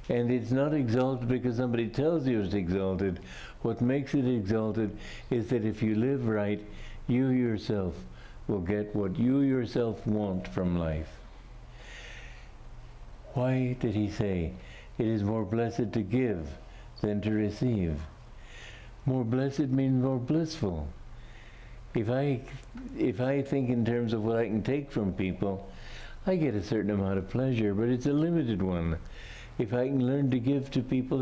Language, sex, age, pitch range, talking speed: English, male, 60-79, 105-135 Hz, 155 wpm